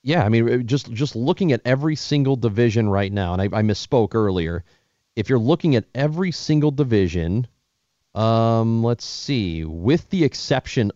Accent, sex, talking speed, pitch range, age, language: American, male, 165 wpm, 90-120 Hz, 30-49, English